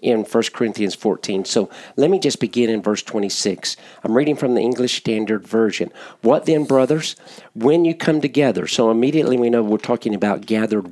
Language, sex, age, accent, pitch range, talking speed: English, male, 50-69, American, 115-155 Hz, 185 wpm